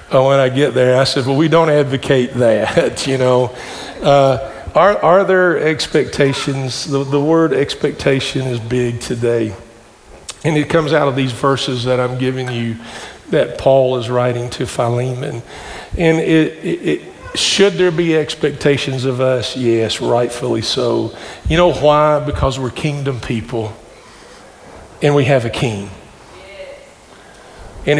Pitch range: 125-150 Hz